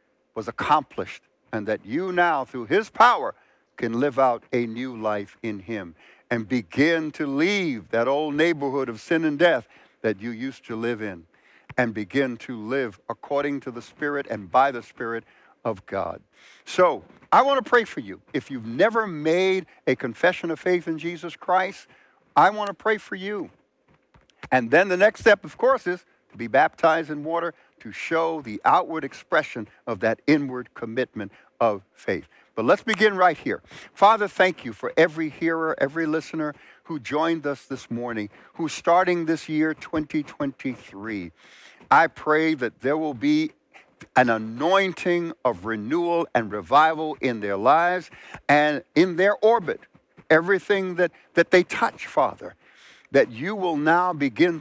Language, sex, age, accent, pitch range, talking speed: English, male, 60-79, American, 125-175 Hz, 165 wpm